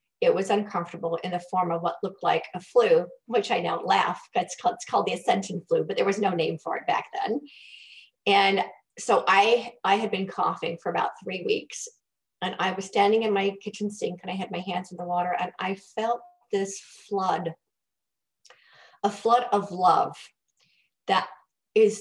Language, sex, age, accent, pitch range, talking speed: English, female, 40-59, American, 185-215 Hz, 195 wpm